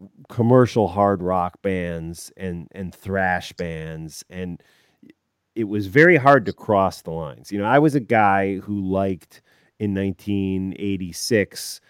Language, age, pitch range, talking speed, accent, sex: English, 30-49, 90-115 Hz, 135 wpm, American, male